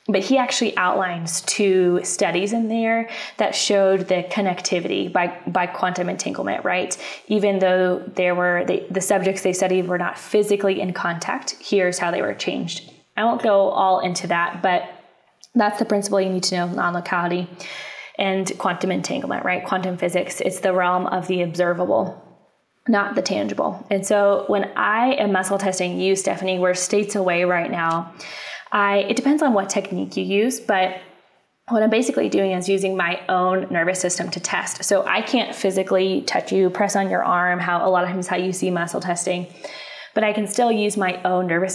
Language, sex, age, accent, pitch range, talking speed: English, female, 20-39, American, 180-205 Hz, 185 wpm